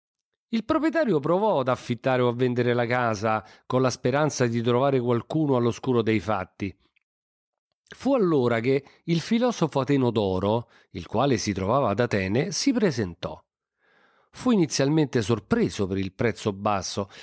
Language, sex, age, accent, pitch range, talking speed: Italian, male, 40-59, native, 105-165 Hz, 140 wpm